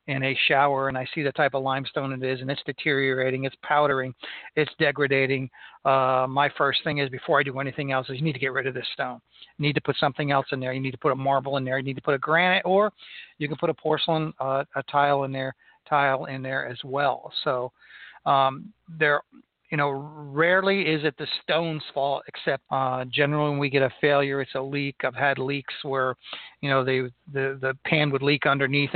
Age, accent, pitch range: 40-59, American, 135-160 Hz